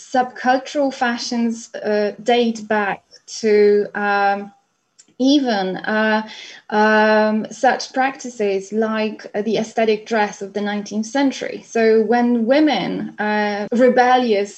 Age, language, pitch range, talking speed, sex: 20-39, English, 195-225 Hz, 105 wpm, female